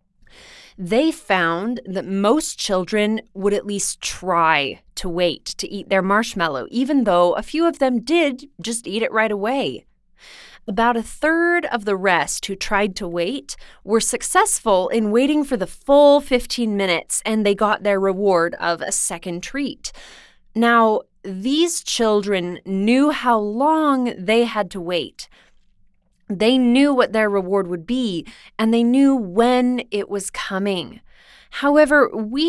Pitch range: 195-255 Hz